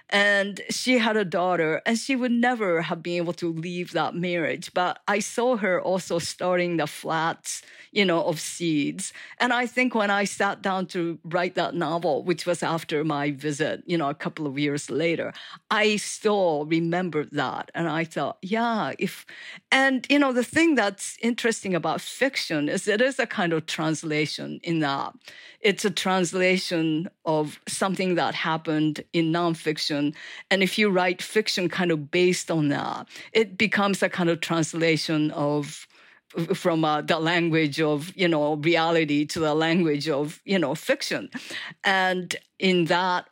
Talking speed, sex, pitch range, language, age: 170 wpm, female, 155-190 Hz, English, 50-69